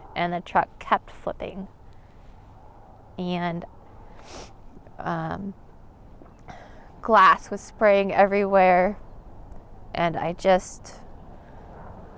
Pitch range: 170-195 Hz